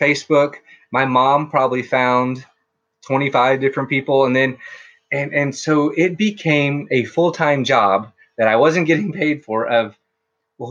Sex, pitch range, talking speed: male, 125-160 Hz, 145 wpm